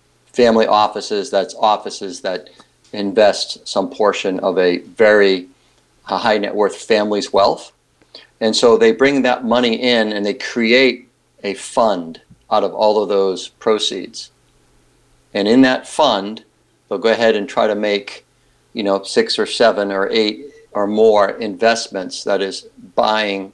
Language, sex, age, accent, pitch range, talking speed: English, male, 50-69, American, 100-125 Hz, 150 wpm